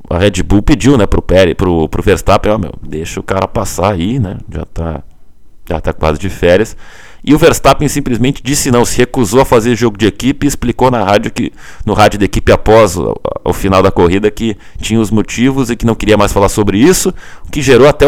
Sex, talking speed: male, 230 wpm